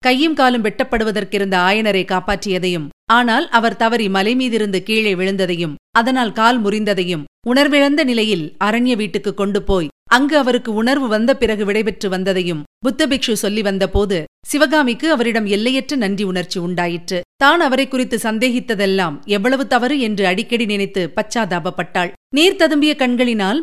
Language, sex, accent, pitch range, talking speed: Tamil, female, native, 205-260 Hz, 125 wpm